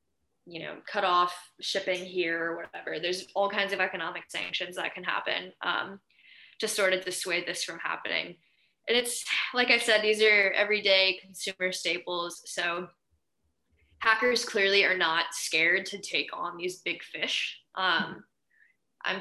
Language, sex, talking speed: English, female, 155 wpm